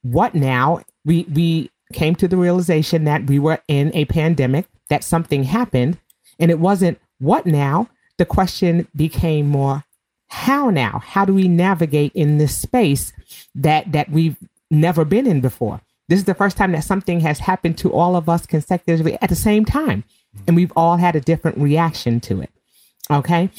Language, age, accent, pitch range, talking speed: English, 40-59, American, 135-170 Hz, 180 wpm